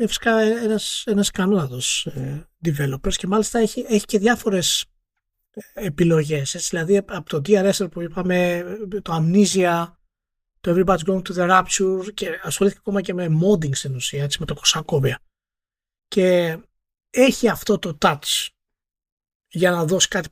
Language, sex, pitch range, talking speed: Greek, male, 145-205 Hz, 140 wpm